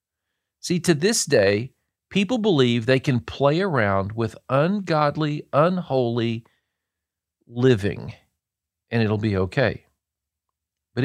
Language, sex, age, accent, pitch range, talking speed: English, male, 50-69, American, 110-170 Hz, 105 wpm